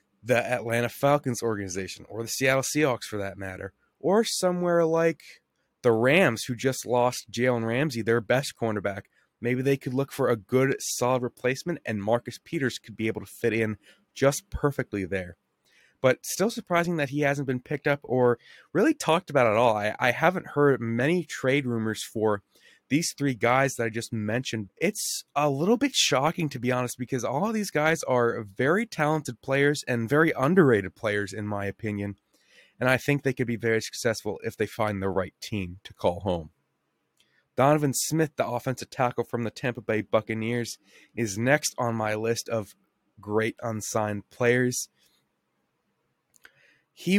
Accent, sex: American, male